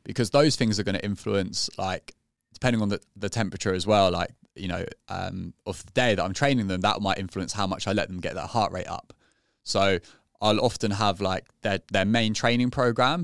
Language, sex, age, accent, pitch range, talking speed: English, male, 20-39, British, 95-115 Hz, 220 wpm